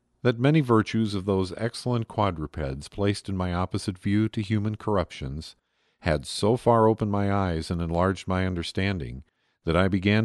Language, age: English, 50-69